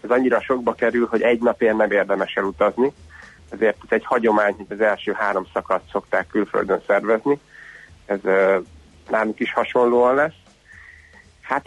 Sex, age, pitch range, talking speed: male, 30-49, 100-120 Hz, 150 wpm